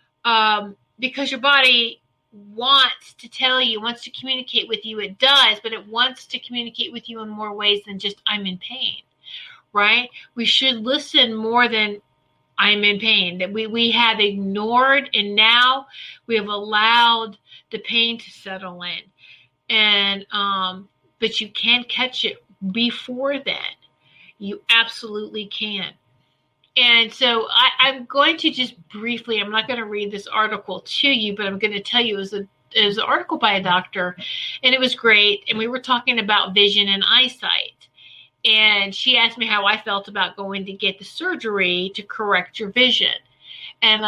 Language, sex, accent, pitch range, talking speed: English, female, American, 205-245 Hz, 170 wpm